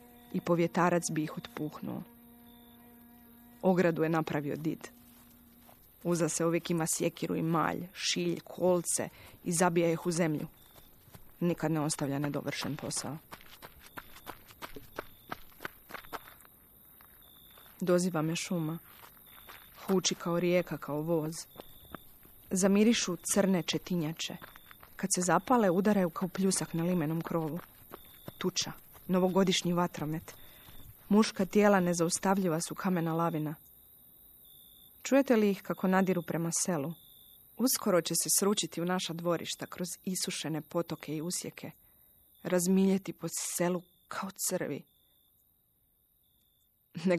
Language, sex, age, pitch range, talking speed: Croatian, female, 30-49, 155-190 Hz, 105 wpm